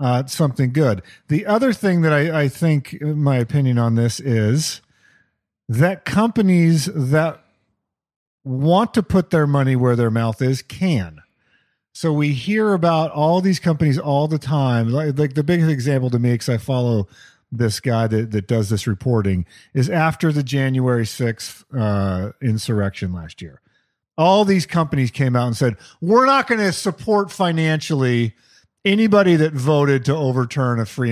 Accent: American